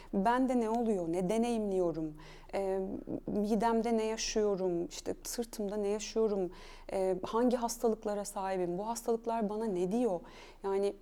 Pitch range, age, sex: 180-235 Hz, 30-49, female